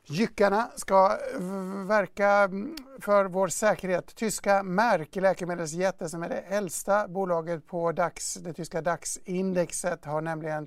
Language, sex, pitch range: English, male, 170-195 Hz